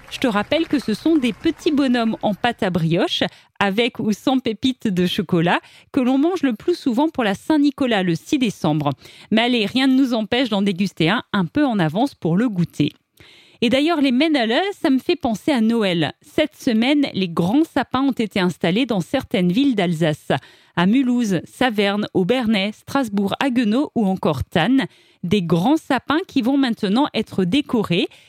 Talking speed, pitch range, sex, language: 180 wpm, 190-275 Hz, female, French